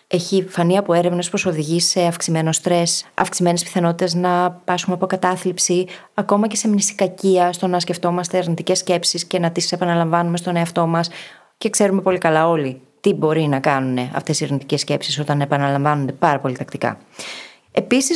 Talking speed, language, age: 165 wpm, Greek, 20-39